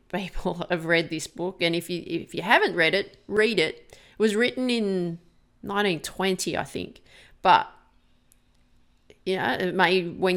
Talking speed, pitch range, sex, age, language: 155 wpm, 170-205 Hz, female, 30-49, English